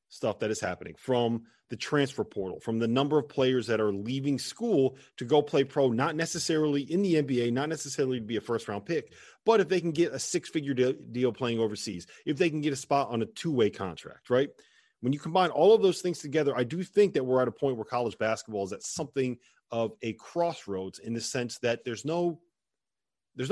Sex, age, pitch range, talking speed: male, 30-49, 120-155 Hz, 220 wpm